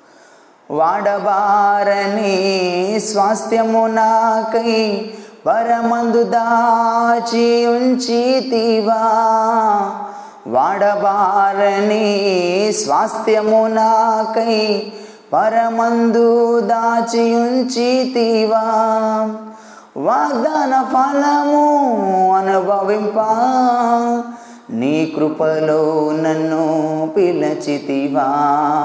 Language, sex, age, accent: Telugu, male, 20-39, native